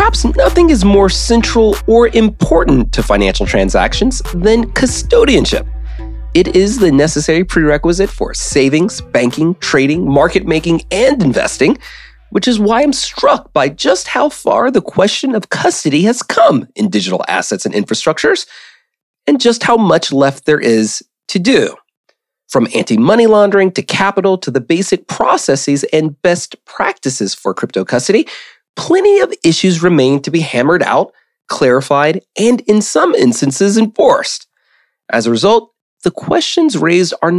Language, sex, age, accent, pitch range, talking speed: English, male, 30-49, American, 155-235 Hz, 145 wpm